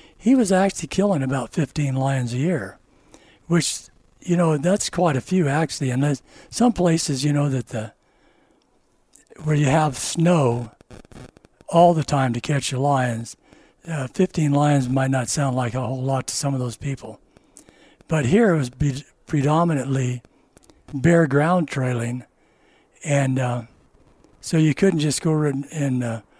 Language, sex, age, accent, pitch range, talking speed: English, male, 60-79, American, 130-160 Hz, 150 wpm